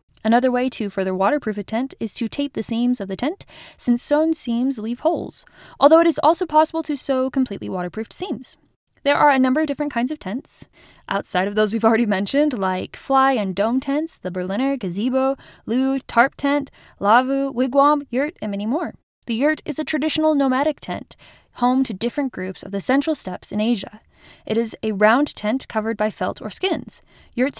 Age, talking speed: 10-29, 195 wpm